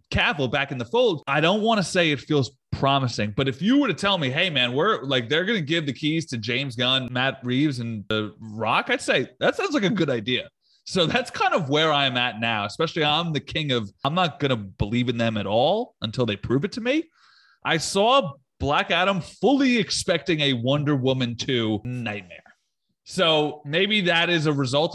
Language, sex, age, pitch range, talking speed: English, male, 30-49, 125-200 Hz, 220 wpm